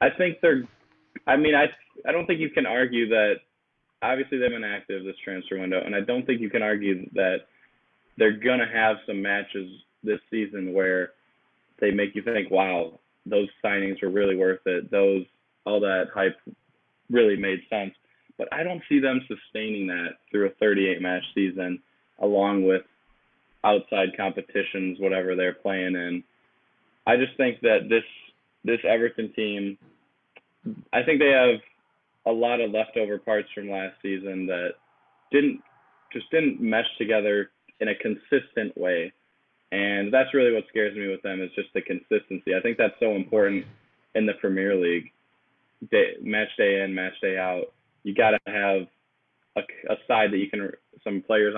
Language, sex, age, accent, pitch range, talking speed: English, male, 20-39, American, 95-110 Hz, 170 wpm